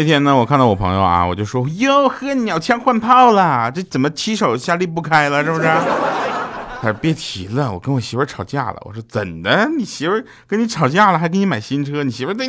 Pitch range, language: 125-180 Hz, Chinese